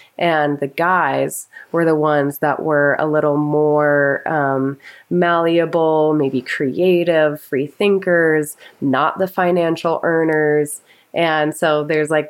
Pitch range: 145-170 Hz